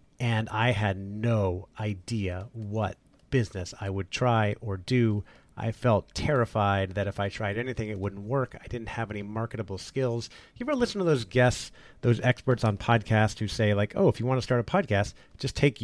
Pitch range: 105-135 Hz